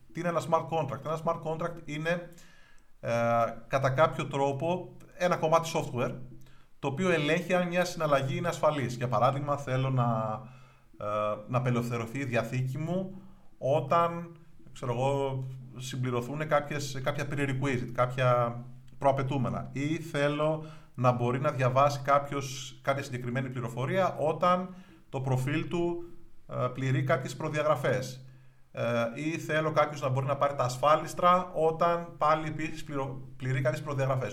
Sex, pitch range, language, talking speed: male, 125-160 Hz, Greek, 135 wpm